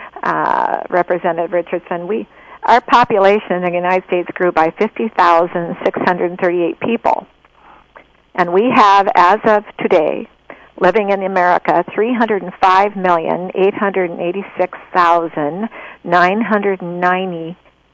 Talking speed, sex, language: 80 wpm, female, English